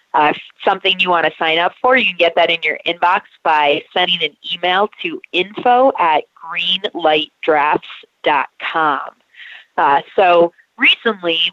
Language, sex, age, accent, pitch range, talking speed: English, female, 30-49, American, 160-220 Hz, 130 wpm